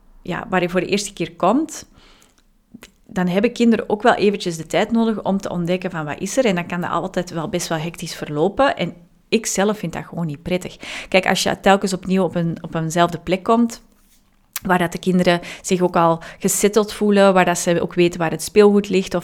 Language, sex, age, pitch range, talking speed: Dutch, female, 30-49, 170-205 Hz, 210 wpm